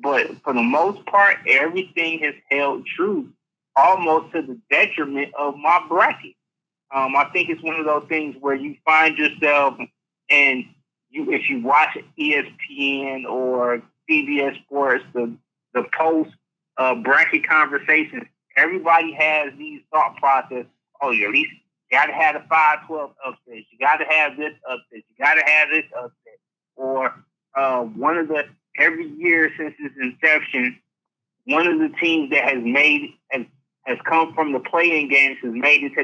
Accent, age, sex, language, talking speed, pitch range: American, 30-49, male, English, 160 wpm, 135-170 Hz